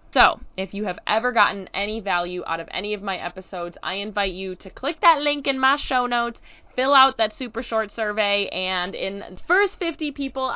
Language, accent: English, American